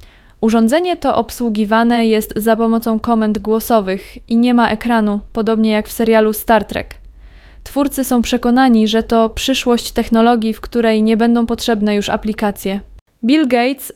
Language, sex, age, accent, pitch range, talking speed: Polish, female, 20-39, native, 215-245 Hz, 145 wpm